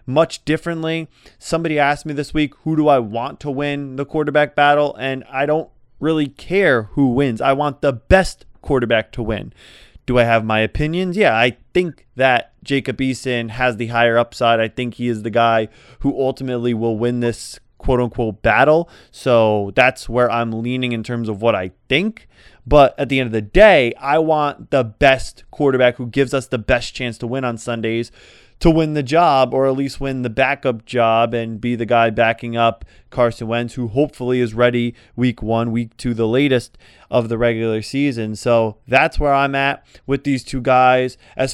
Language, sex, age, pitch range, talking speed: English, male, 20-39, 120-140 Hz, 195 wpm